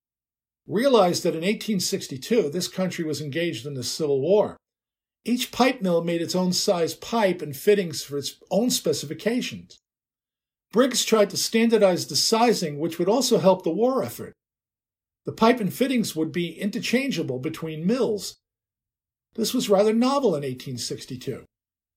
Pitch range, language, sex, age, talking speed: 165-225 Hz, English, male, 50-69, 150 wpm